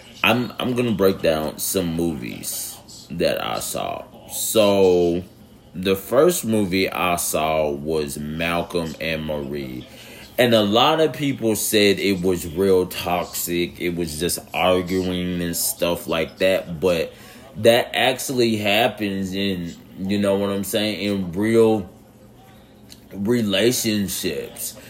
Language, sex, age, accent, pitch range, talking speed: English, male, 30-49, American, 90-110 Hz, 125 wpm